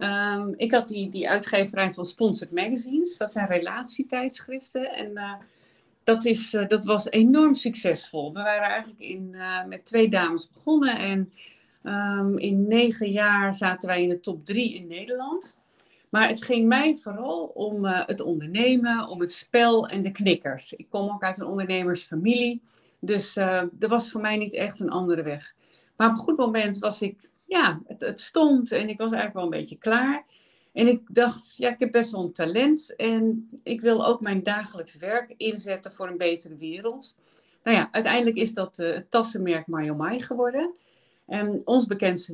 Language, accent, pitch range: Dutch, Dutch, 180-235 Hz